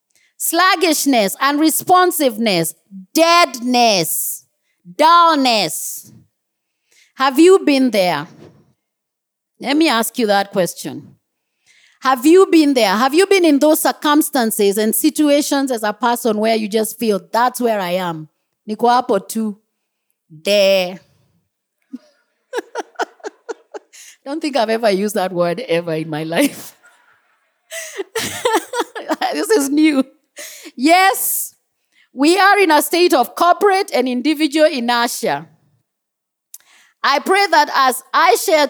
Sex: female